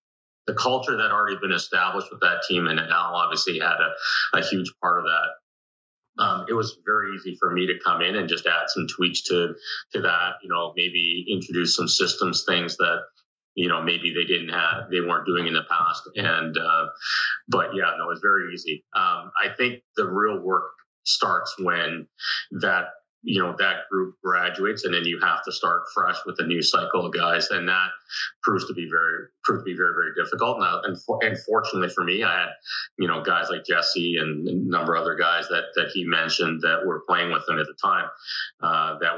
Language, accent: English, American